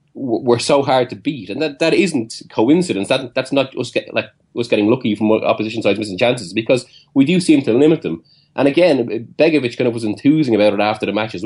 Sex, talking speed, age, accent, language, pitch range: male, 230 wpm, 30-49, Irish, English, 105-145 Hz